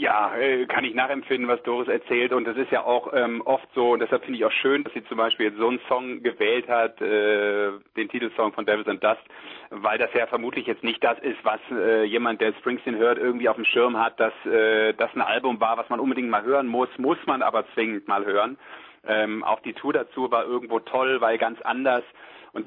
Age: 40-59